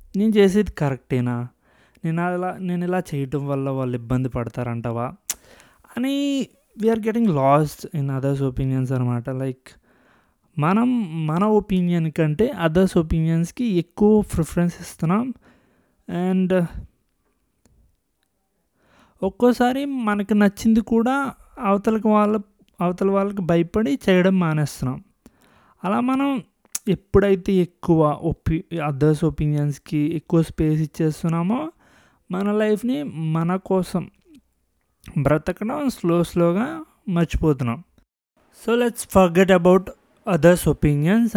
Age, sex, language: 20-39, male, Telugu